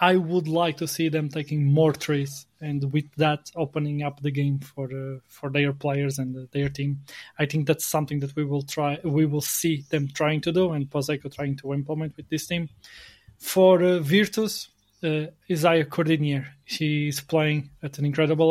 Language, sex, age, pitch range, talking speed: English, male, 20-39, 140-160 Hz, 190 wpm